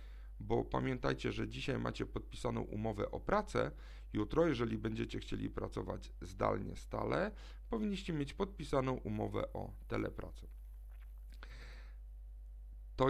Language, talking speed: Polish, 105 wpm